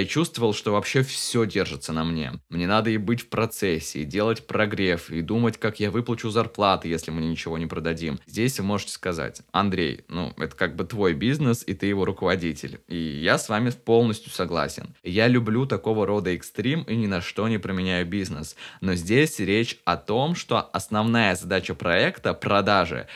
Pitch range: 95-115 Hz